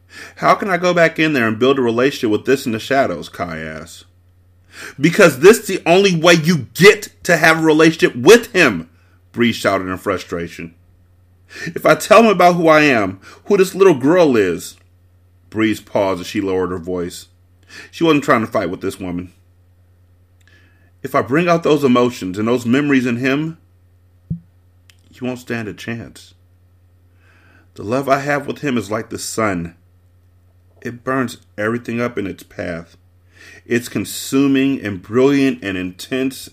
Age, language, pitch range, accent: 30-49, English, 90-125 Hz, American